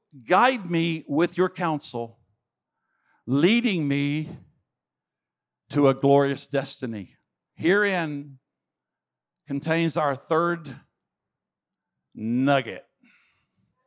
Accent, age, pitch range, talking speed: American, 50-69, 145-175 Hz, 70 wpm